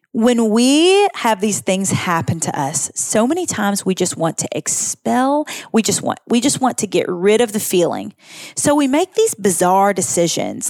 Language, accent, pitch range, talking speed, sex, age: English, American, 180-230 Hz, 190 wpm, female, 30-49